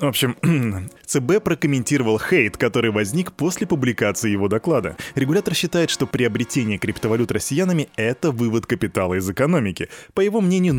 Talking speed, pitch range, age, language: 140 wpm, 110-150 Hz, 20-39, Russian